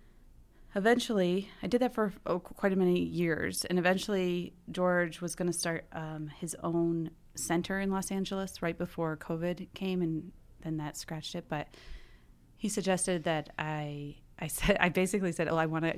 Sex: female